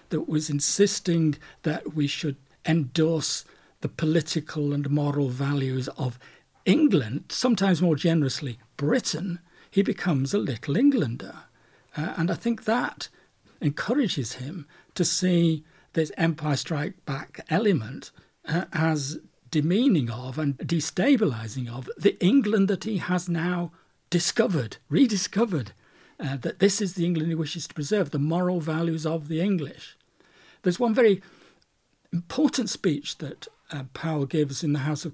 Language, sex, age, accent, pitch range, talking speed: English, male, 60-79, British, 150-195 Hz, 140 wpm